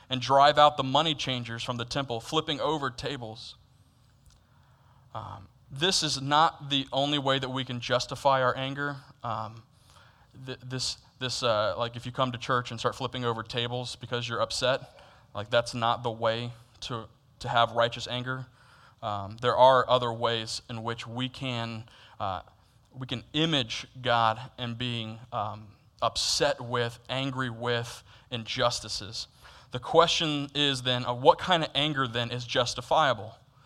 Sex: male